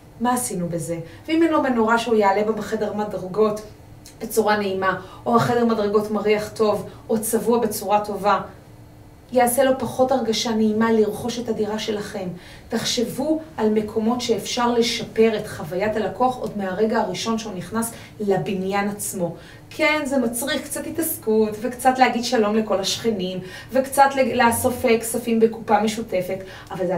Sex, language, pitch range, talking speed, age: female, Hebrew, 205-235 Hz, 140 wpm, 30-49